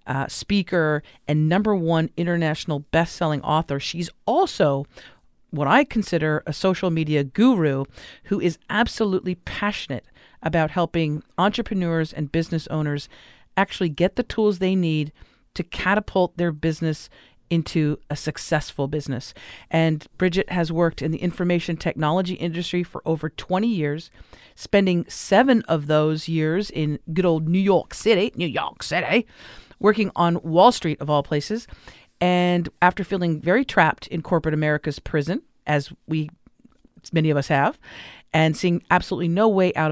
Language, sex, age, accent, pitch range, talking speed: English, female, 40-59, American, 155-190 Hz, 145 wpm